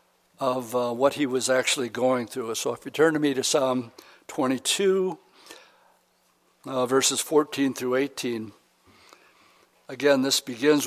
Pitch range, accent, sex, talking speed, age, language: 125-150 Hz, American, male, 140 wpm, 60-79, English